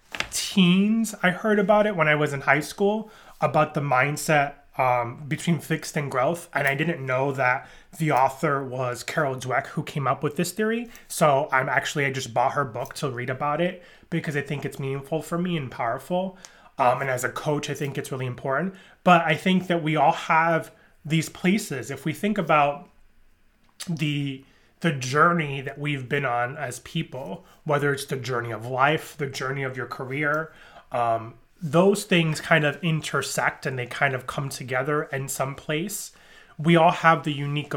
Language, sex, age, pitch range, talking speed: English, male, 30-49, 135-170 Hz, 190 wpm